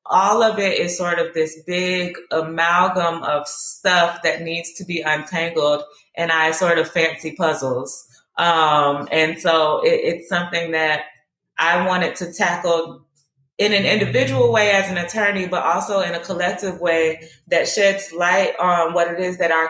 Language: English